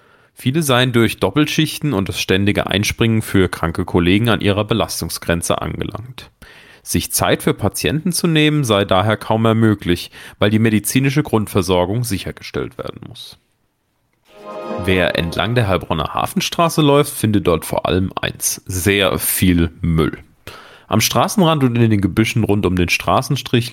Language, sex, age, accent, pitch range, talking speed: German, male, 40-59, German, 95-125 Hz, 145 wpm